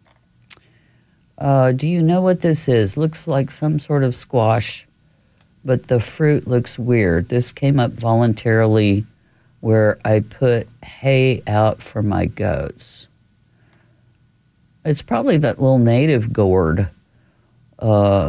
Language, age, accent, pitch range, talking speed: English, 50-69, American, 105-125 Hz, 120 wpm